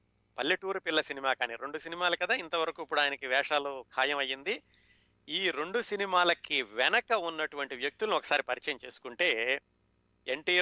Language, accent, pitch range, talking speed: Telugu, native, 120-165 Hz, 130 wpm